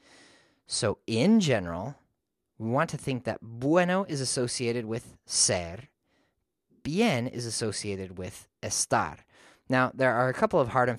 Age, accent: 30-49, American